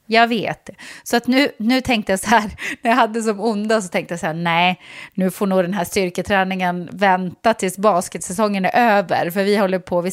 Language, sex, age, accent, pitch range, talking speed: English, female, 30-49, Swedish, 185-260 Hz, 220 wpm